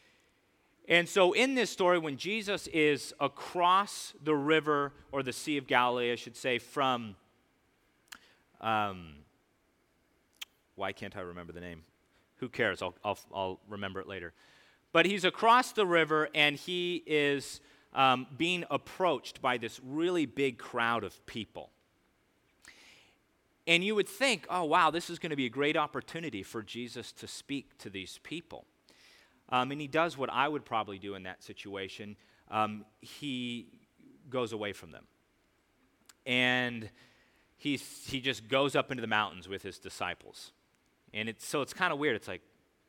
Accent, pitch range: American, 115-165 Hz